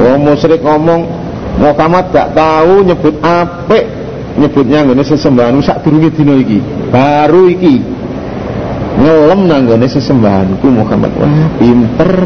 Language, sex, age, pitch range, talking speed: Indonesian, male, 50-69, 135-175 Hz, 115 wpm